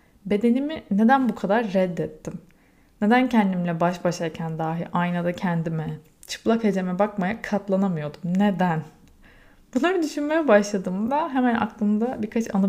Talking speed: 115 wpm